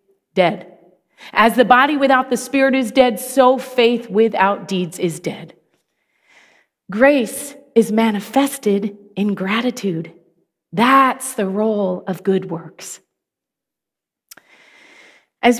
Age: 40-59